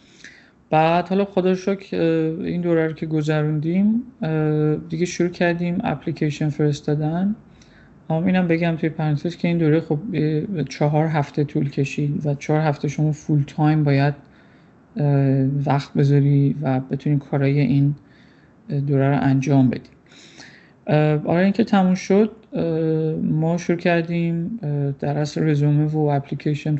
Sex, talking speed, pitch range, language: male, 125 wpm, 145-170 Hz, Persian